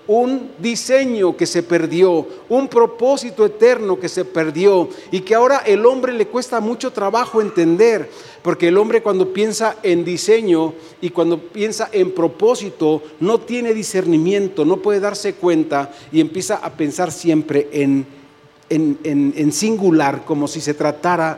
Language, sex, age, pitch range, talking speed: Spanish, male, 40-59, 160-215 Hz, 145 wpm